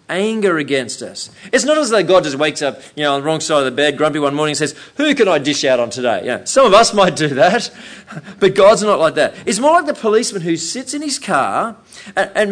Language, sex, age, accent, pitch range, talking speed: English, male, 40-59, Australian, 150-220 Hz, 265 wpm